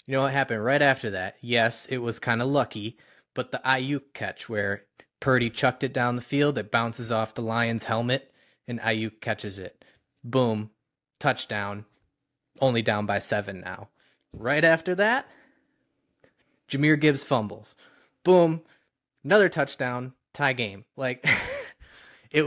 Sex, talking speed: male, 145 wpm